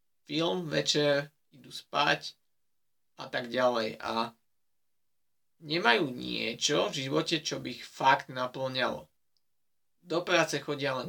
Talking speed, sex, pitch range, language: 115 wpm, male, 135-160 Hz, Slovak